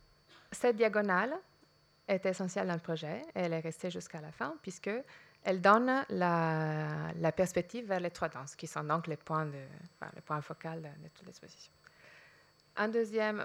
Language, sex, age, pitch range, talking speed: French, female, 30-49, 160-190 Hz, 170 wpm